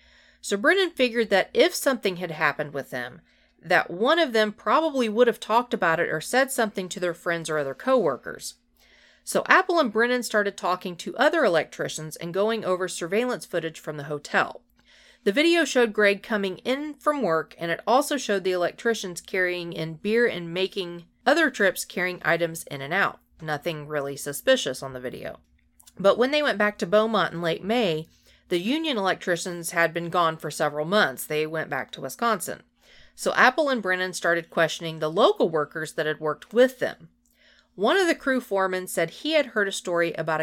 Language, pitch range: English, 160-230 Hz